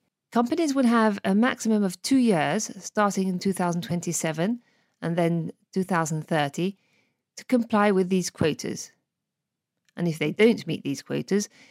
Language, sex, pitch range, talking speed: French, female, 175-230 Hz, 135 wpm